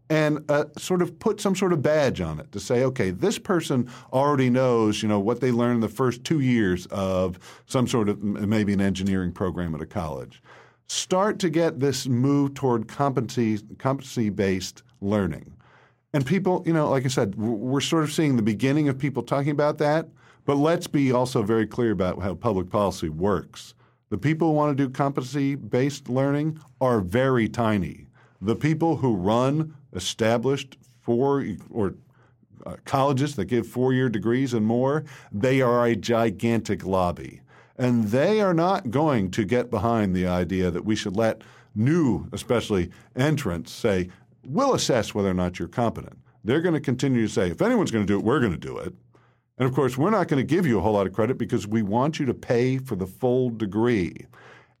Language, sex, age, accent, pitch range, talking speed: English, male, 50-69, American, 105-140 Hz, 190 wpm